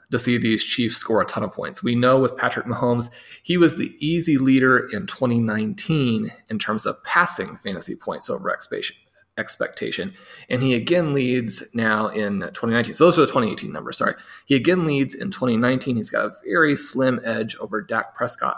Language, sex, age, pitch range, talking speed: English, male, 30-49, 115-145 Hz, 185 wpm